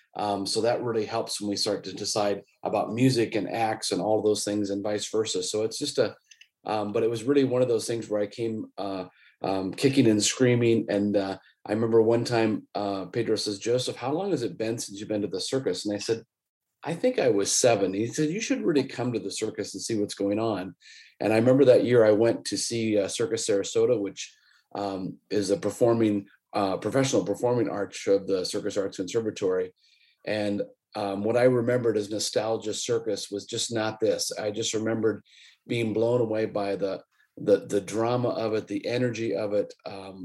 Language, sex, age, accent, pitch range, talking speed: English, male, 30-49, American, 105-120 Hz, 210 wpm